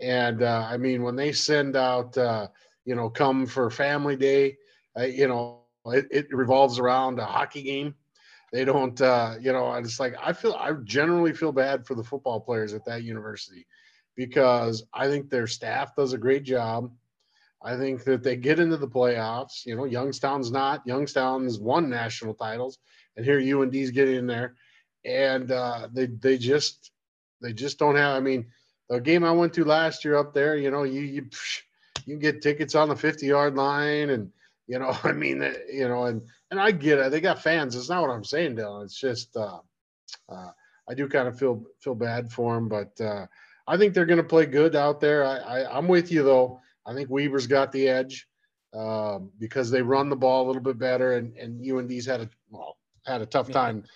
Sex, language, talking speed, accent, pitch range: male, English, 210 wpm, American, 120-140 Hz